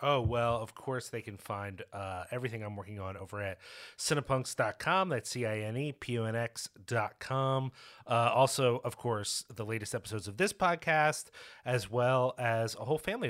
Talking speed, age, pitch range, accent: 180 wpm, 30-49, 110-135 Hz, American